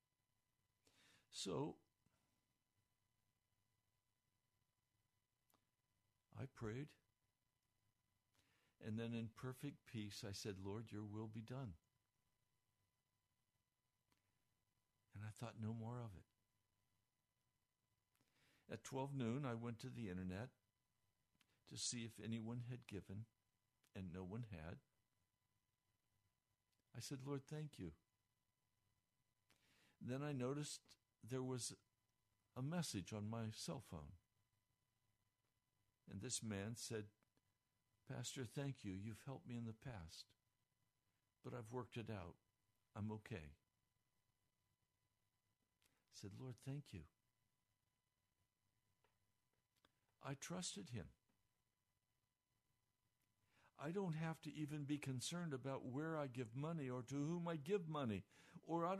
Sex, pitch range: male, 105-130 Hz